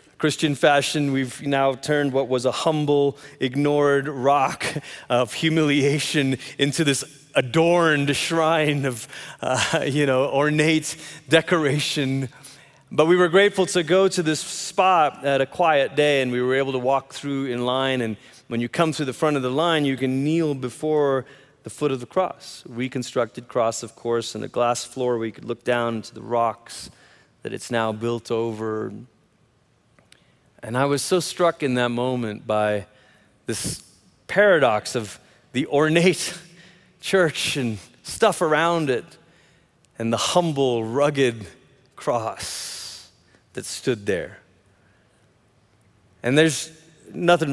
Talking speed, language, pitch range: 145 wpm, English, 120-150 Hz